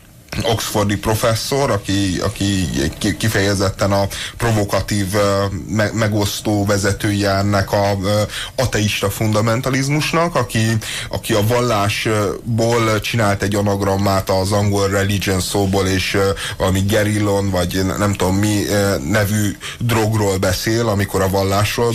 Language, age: Hungarian, 30-49